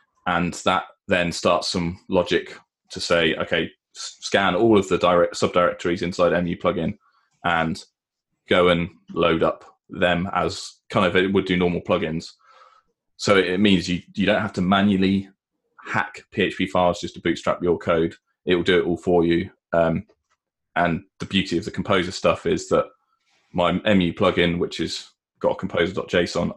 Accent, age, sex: British, 20-39, male